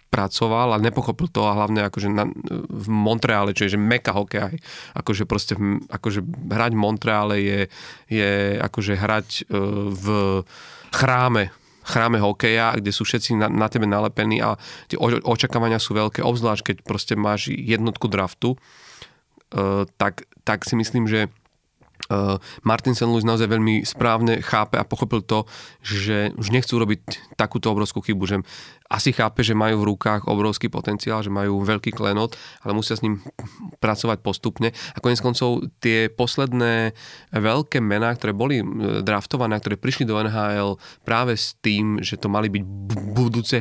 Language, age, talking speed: Slovak, 30-49, 155 wpm